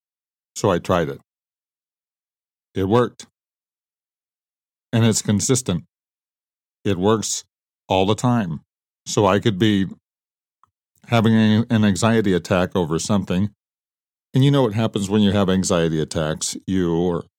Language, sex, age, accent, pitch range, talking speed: English, male, 50-69, American, 90-110 Hz, 125 wpm